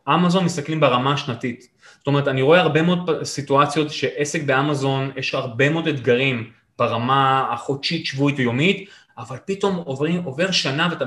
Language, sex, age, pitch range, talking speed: Hebrew, male, 20-39, 140-185 Hz, 145 wpm